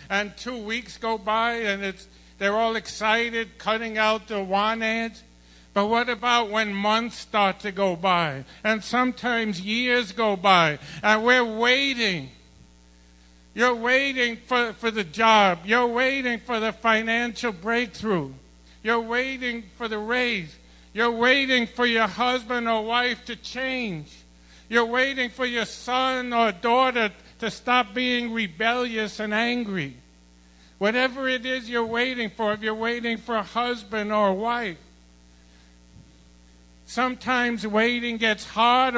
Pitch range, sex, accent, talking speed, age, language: 200-240 Hz, male, American, 140 wpm, 60-79, English